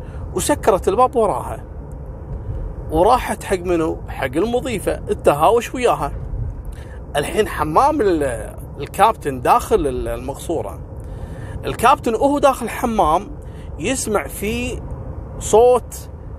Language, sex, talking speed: Arabic, male, 80 wpm